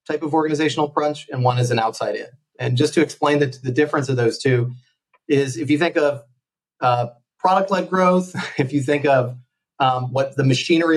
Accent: American